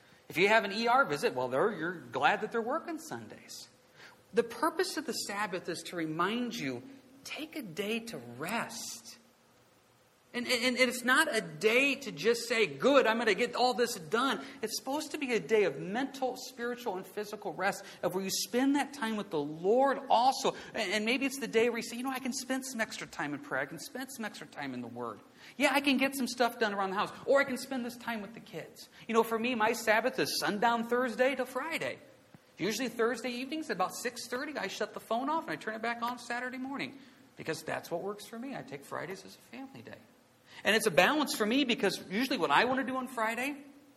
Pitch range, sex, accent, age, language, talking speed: 175-255 Hz, male, American, 40-59, English, 230 wpm